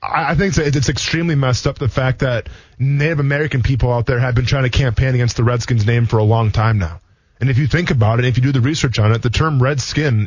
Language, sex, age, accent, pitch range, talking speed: English, male, 20-39, American, 120-150 Hz, 255 wpm